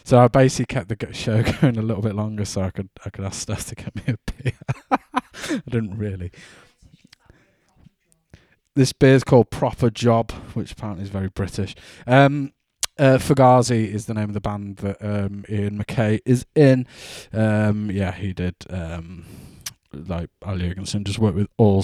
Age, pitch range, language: 20-39, 100-125 Hz, English